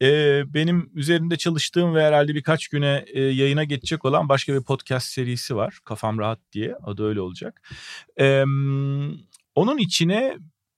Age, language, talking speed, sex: 40-59, Turkish, 130 wpm, male